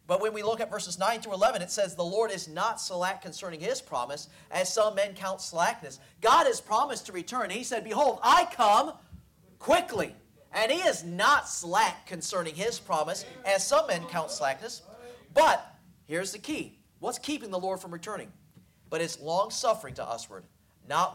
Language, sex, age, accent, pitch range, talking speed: English, male, 40-59, American, 160-220 Hz, 180 wpm